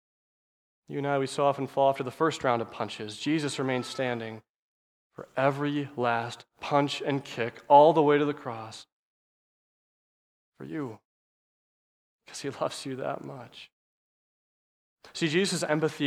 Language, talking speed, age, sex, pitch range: English, 145 wpm, 20-39, male, 125-170 Hz